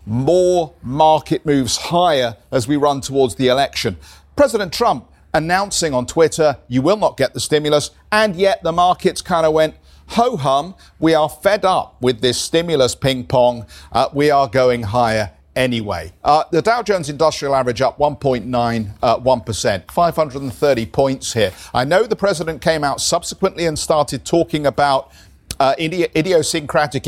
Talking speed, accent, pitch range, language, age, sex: 150 wpm, British, 125-170 Hz, English, 50-69, male